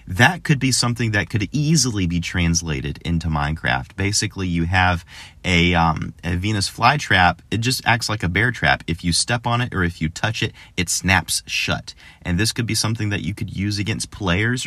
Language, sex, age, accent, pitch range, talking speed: English, male, 30-49, American, 85-120 Hz, 205 wpm